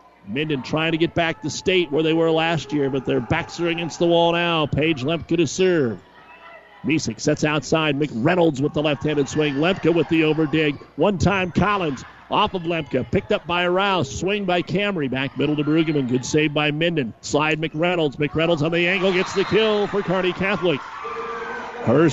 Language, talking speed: English, 195 wpm